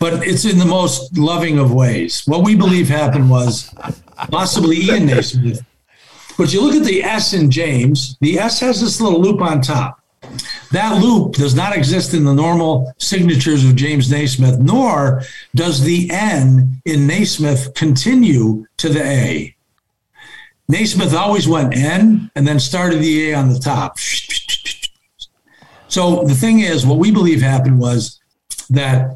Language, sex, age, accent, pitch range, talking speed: English, male, 60-79, American, 130-175 Hz, 155 wpm